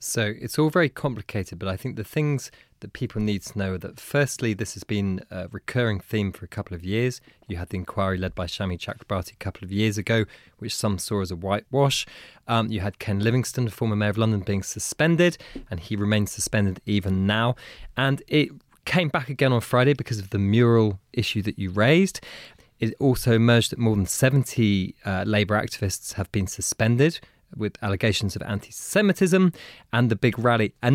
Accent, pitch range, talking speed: British, 105-140 Hz, 200 wpm